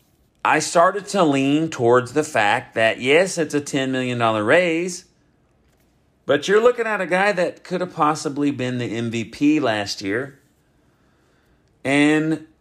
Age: 40-59